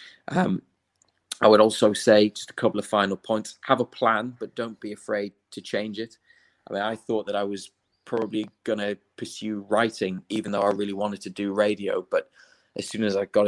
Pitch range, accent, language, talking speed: 95-110 Hz, British, English, 210 wpm